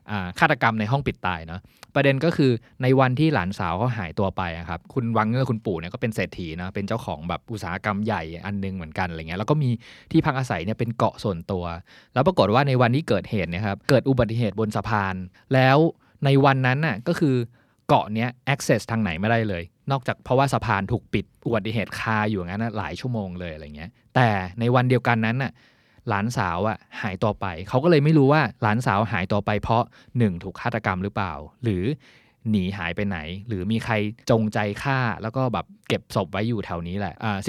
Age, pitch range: 20-39, 95-125 Hz